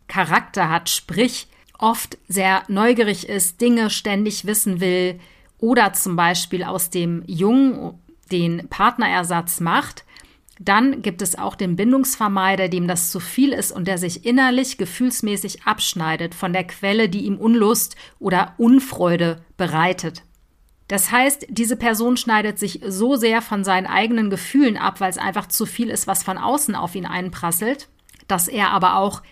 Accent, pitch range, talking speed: German, 180-225 Hz, 155 wpm